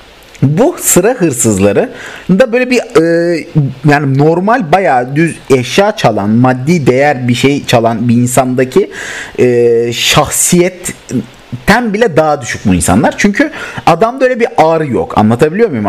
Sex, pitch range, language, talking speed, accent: male, 125-185 Hz, Turkish, 130 wpm, native